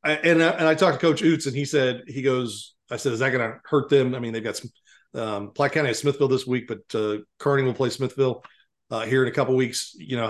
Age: 40-59